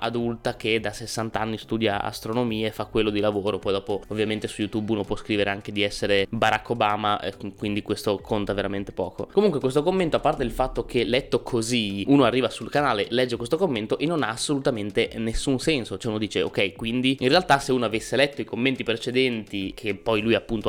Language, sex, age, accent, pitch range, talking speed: Italian, male, 20-39, native, 110-140 Hz, 210 wpm